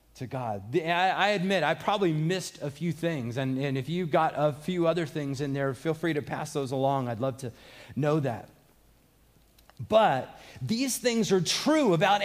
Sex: male